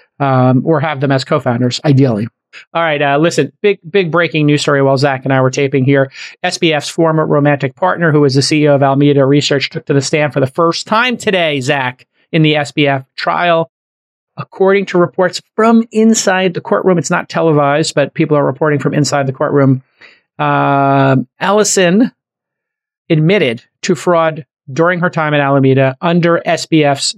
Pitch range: 140-165 Hz